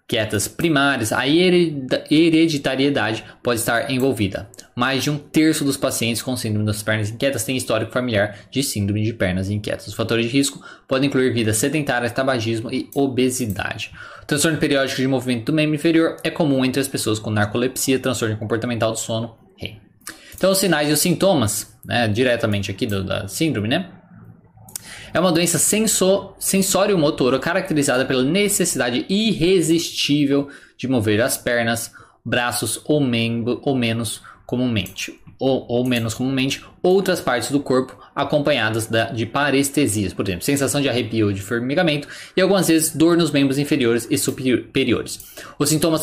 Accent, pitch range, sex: Brazilian, 115-150 Hz, male